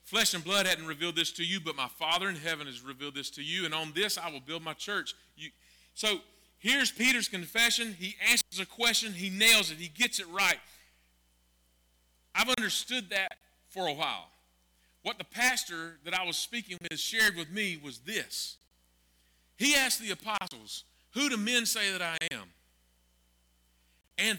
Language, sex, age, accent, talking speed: English, male, 40-59, American, 180 wpm